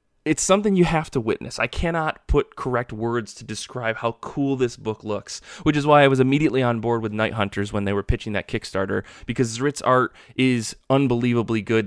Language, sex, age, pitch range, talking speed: English, male, 20-39, 115-140 Hz, 205 wpm